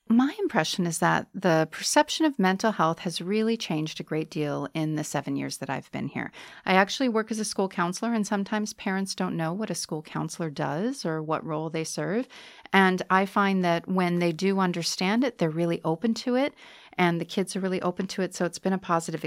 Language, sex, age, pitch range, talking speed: English, female, 40-59, 165-220 Hz, 225 wpm